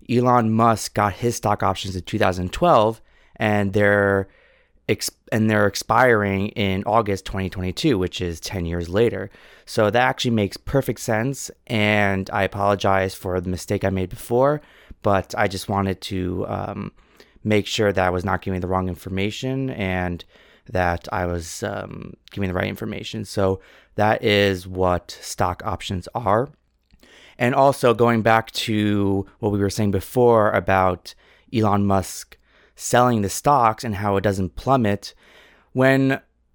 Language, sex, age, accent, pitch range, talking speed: English, male, 30-49, American, 95-115 Hz, 150 wpm